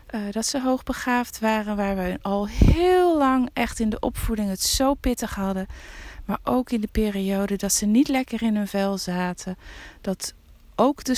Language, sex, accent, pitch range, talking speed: Dutch, female, Dutch, 195-250 Hz, 185 wpm